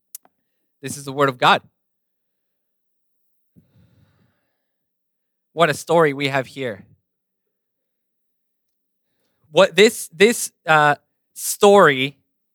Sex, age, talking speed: male, 20-39, 80 wpm